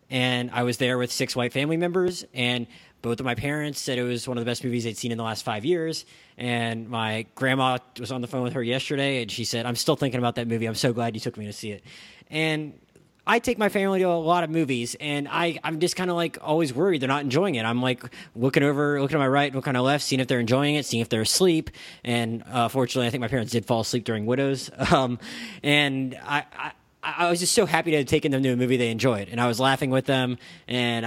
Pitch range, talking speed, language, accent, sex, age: 120-165 Hz, 265 wpm, English, American, male, 20-39